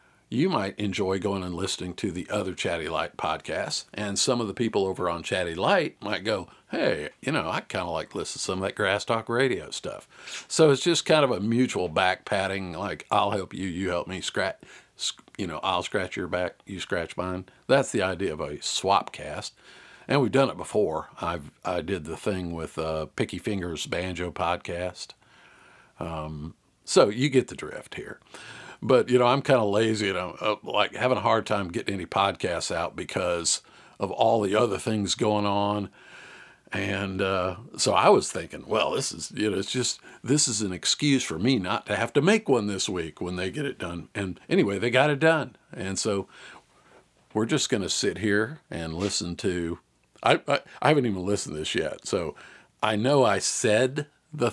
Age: 50-69